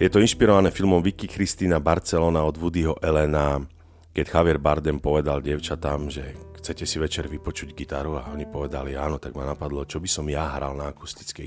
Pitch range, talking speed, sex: 75-90 Hz, 185 wpm, male